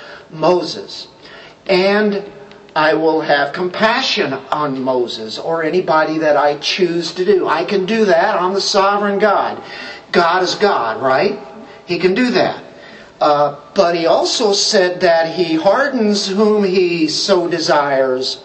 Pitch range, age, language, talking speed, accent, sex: 160-215 Hz, 50-69, English, 140 wpm, American, male